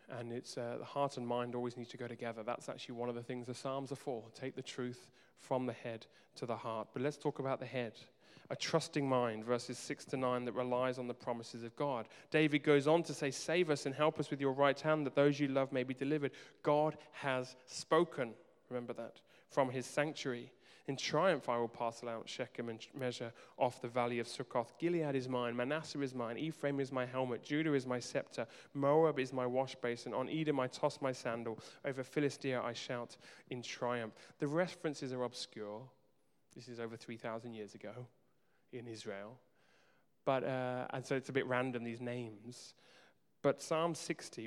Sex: male